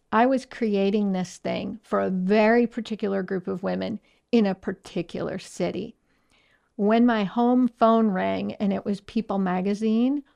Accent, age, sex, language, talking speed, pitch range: American, 50-69, female, English, 150 wpm, 190-230 Hz